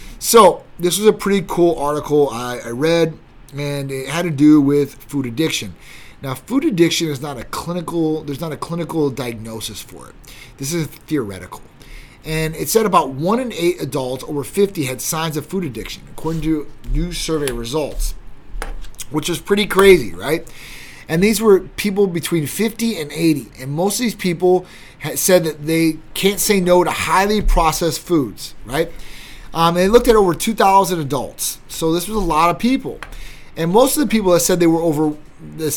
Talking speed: 185 wpm